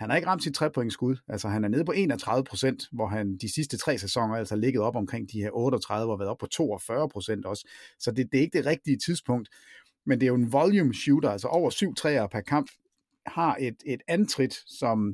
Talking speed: 230 wpm